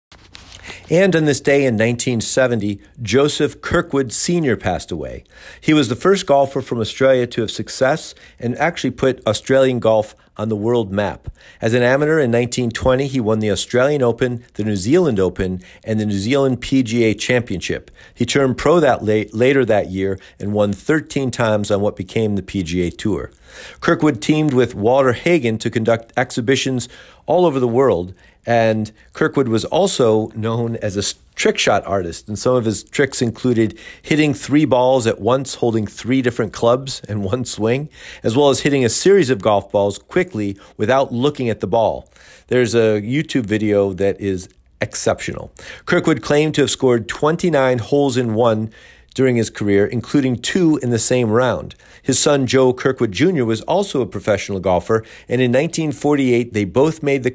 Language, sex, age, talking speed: English, male, 50-69, 175 wpm